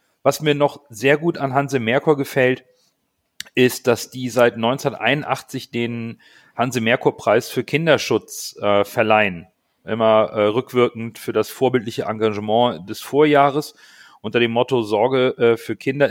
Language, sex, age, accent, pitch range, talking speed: German, male, 40-59, German, 115-140 Hz, 130 wpm